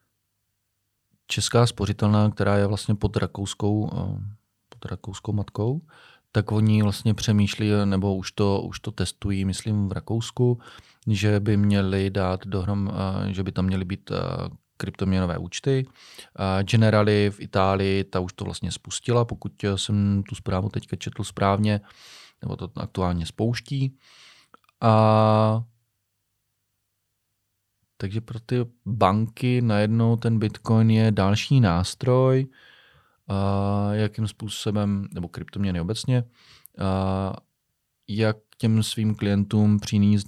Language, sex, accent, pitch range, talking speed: Czech, male, native, 95-115 Hz, 115 wpm